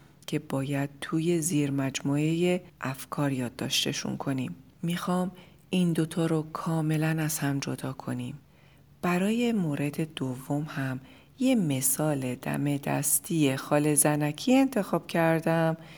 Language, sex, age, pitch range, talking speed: Persian, female, 40-59, 140-180 Hz, 110 wpm